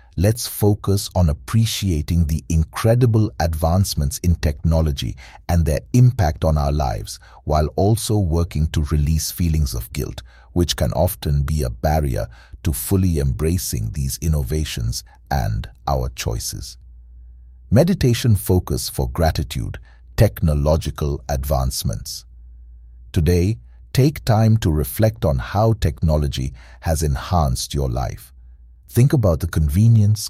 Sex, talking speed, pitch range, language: male, 115 wpm, 75-100 Hz, English